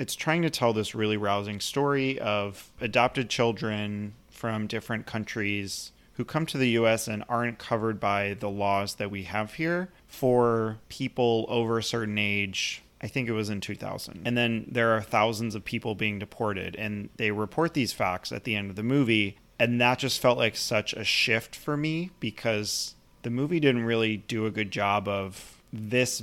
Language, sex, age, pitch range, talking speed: English, male, 30-49, 105-120 Hz, 190 wpm